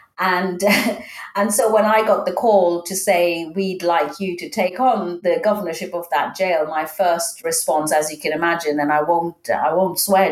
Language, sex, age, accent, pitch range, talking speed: English, female, 40-59, British, 155-200 Hz, 200 wpm